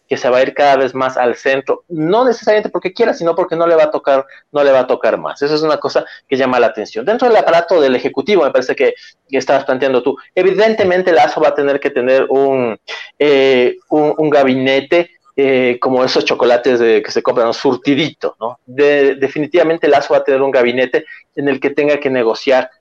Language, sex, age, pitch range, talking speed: Spanish, male, 30-49, 130-170 Hz, 220 wpm